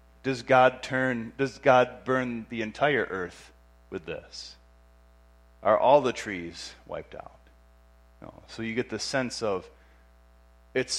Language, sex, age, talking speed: English, male, 30-49, 135 wpm